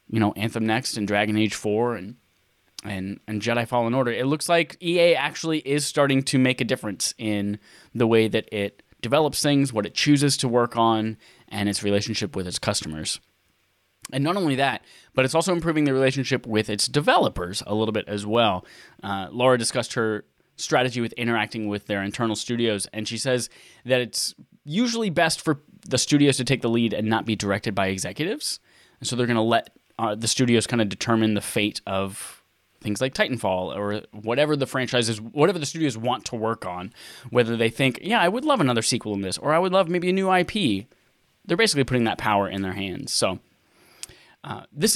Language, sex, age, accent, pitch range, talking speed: English, male, 10-29, American, 105-135 Hz, 205 wpm